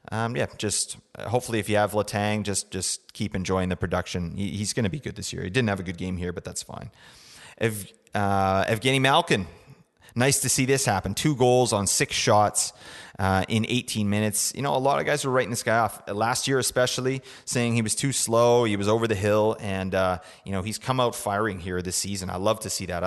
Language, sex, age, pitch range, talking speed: English, male, 30-49, 100-125 Hz, 235 wpm